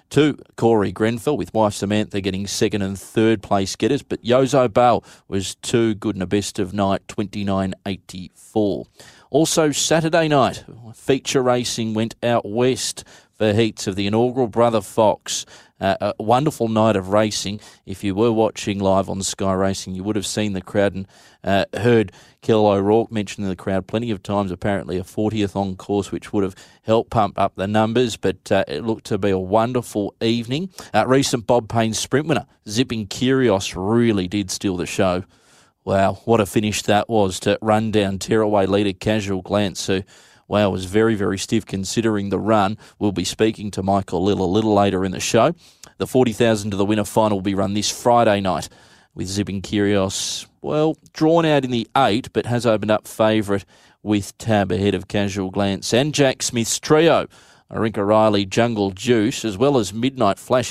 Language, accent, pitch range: English, Australian, 95-115 Hz